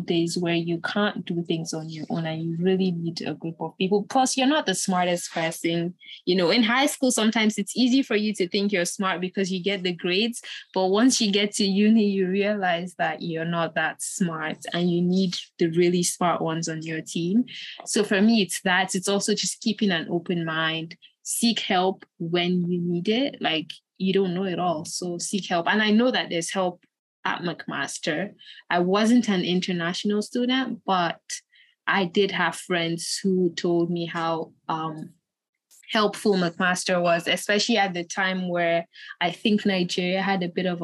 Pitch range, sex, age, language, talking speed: 175-215 Hz, female, 20-39, English, 190 wpm